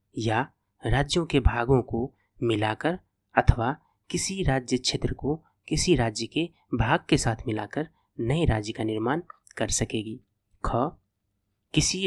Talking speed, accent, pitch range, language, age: 125 wpm, native, 110-135 Hz, Hindi, 30-49